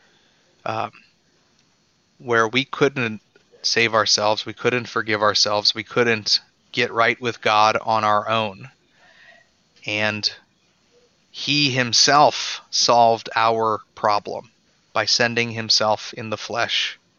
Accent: American